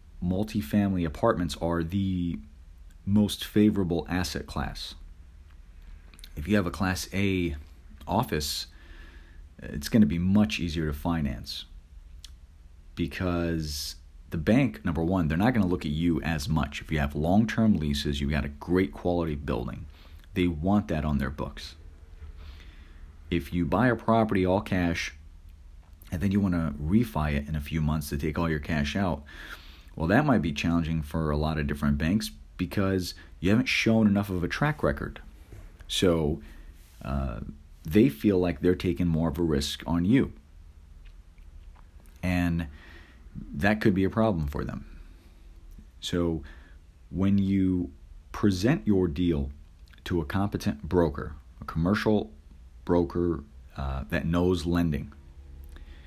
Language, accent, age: English, American, 40-59